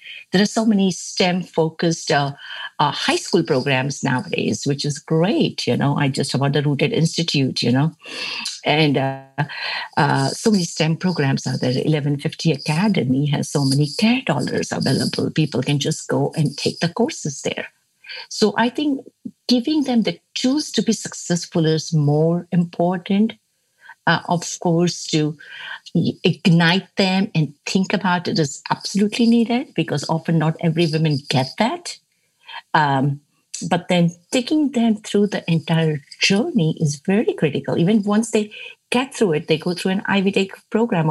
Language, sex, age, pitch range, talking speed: English, female, 60-79, 155-220 Hz, 160 wpm